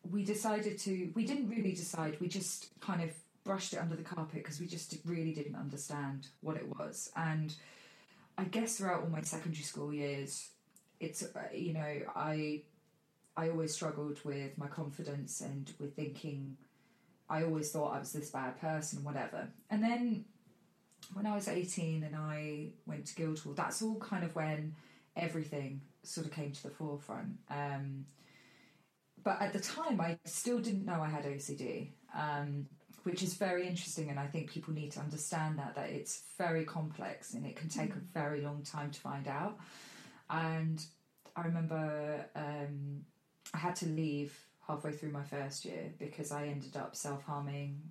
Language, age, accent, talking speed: English, 20-39, British, 170 wpm